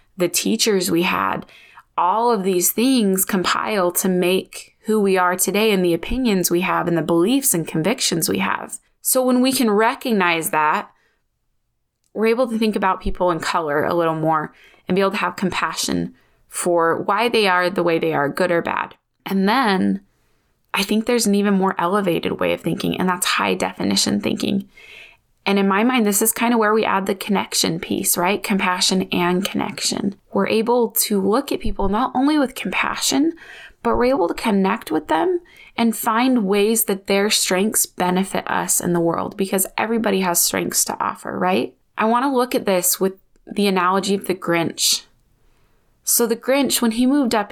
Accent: American